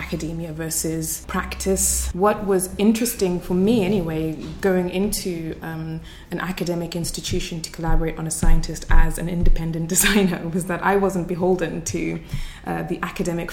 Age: 20-39